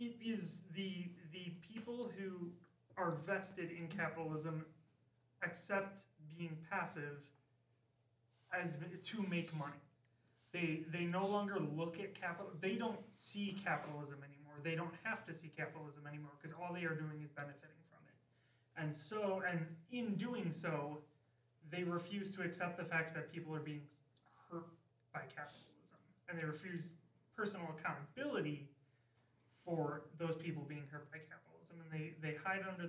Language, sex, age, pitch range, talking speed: English, male, 30-49, 145-175 Hz, 150 wpm